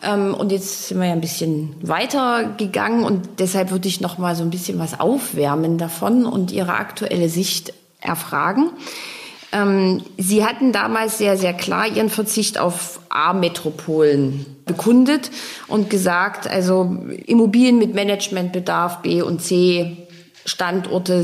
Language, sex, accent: German, female, German